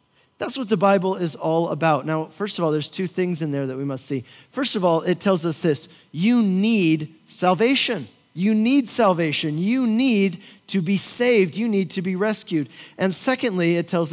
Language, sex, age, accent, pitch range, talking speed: English, male, 40-59, American, 160-205 Hz, 200 wpm